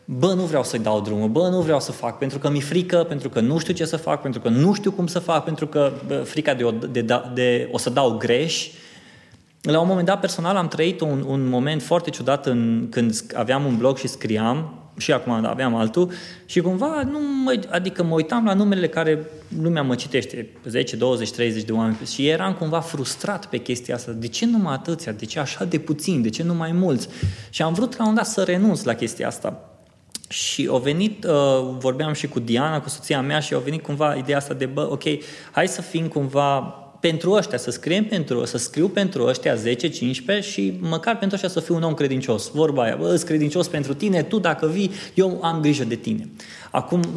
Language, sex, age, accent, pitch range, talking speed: Romanian, male, 20-39, native, 125-175 Hz, 220 wpm